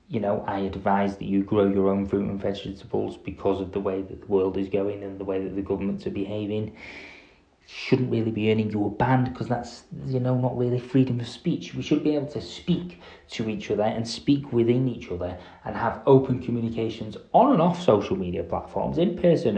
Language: English